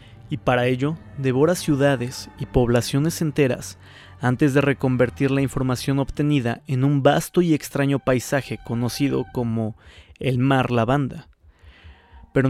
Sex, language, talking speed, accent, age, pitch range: male, Spanish, 125 wpm, Mexican, 30-49, 120-150 Hz